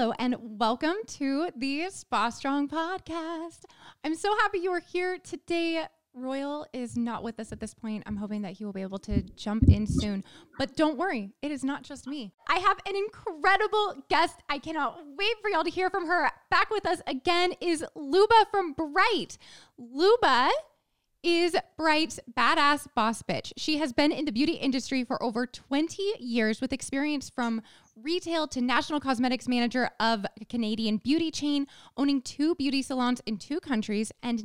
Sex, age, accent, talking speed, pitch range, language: female, 10-29, American, 180 wpm, 230-325 Hz, English